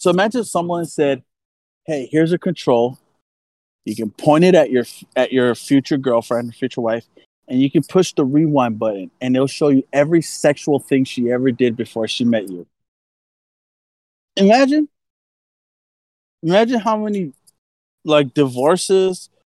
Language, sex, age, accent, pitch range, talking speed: English, male, 20-39, American, 120-155 Hz, 145 wpm